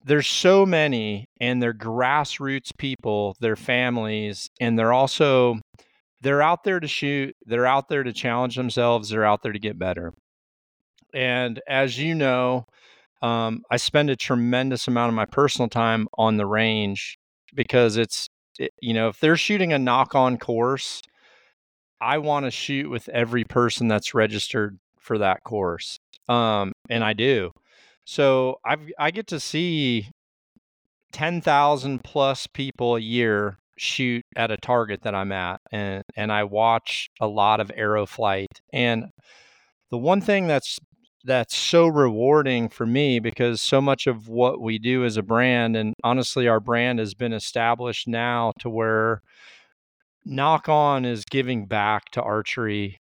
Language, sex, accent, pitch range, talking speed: English, male, American, 110-135 Hz, 155 wpm